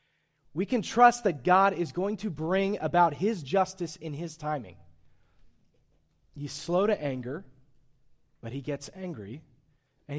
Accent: American